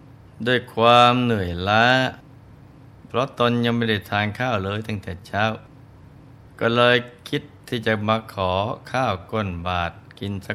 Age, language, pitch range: 20-39, Thai, 100-125 Hz